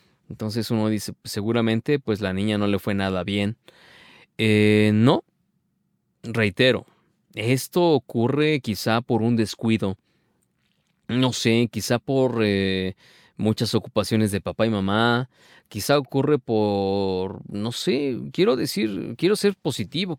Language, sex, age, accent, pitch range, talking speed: Spanish, male, 30-49, Mexican, 105-130 Hz, 125 wpm